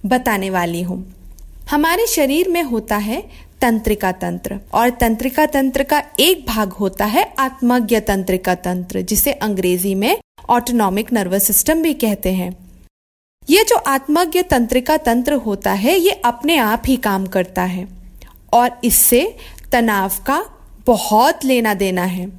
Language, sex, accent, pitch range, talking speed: Hindi, female, native, 200-275 Hz, 140 wpm